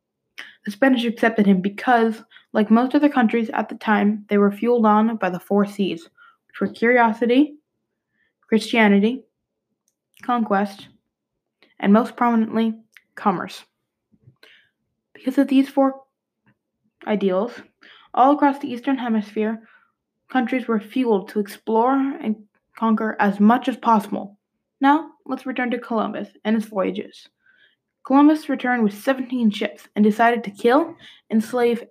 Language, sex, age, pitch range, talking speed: English, female, 20-39, 205-255 Hz, 130 wpm